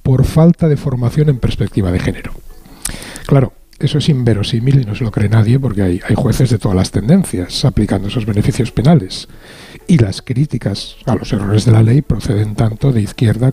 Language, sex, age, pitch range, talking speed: Spanish, male, 60-79, 110-145 Hz, 185 wpm